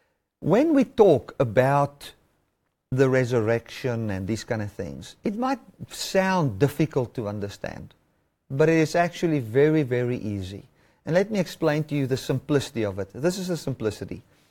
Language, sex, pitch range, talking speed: English, male, 130-185 Hz, 155 wpm